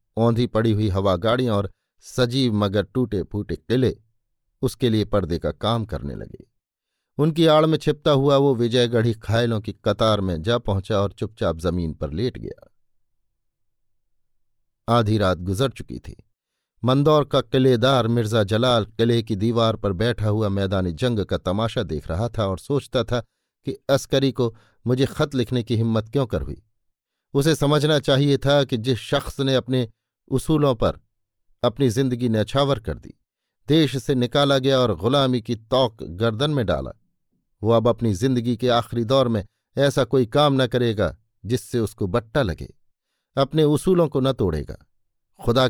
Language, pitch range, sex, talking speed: Hindi, 105-130 Hz, male, 165 wpm